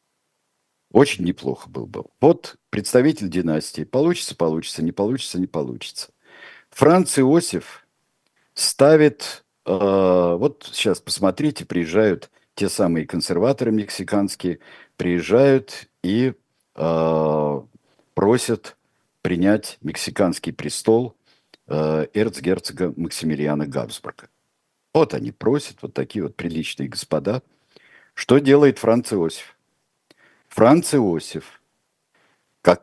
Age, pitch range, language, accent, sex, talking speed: 50-69, 85-125 Hz, Russian, native, male, 90 wpm